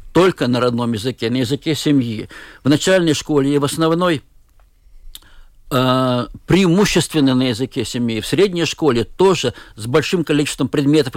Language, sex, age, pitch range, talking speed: Russian, male, 50-69, 125-155 Hz, 140 wpm